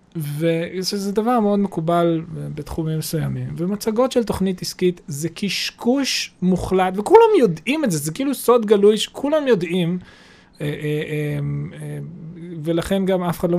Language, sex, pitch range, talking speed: Hebrew, male, 170-225 Hz, 125 wpm